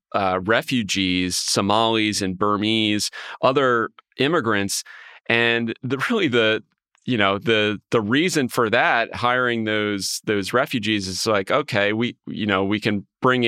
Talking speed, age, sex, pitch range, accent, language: 140 wpm, 30-49, male, 95-110 Hz, American, English